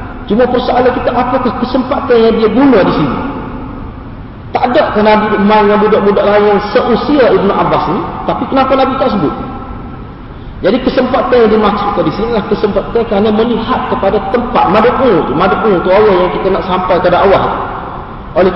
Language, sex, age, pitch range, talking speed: Malay, male, 40-59, 200-255 Hz, 165 wpm